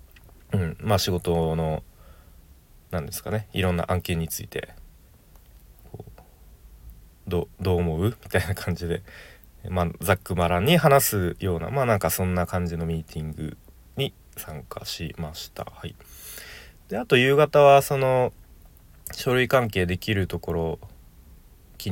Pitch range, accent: 80-110 Hz, native